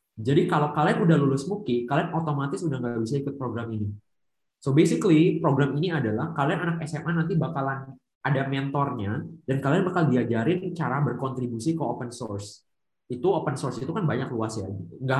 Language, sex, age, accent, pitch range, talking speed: Indonesian, male, 20-39, native, 115-150 Hz, 175 wpm